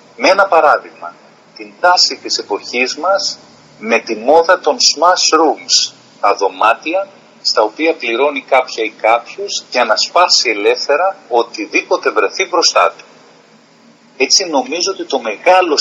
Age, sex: 40-59, male